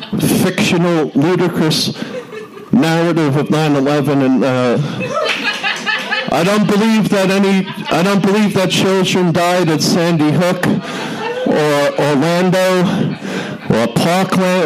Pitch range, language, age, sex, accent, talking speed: 170-210 Hz, English, 50-69, male, American, 100 wpm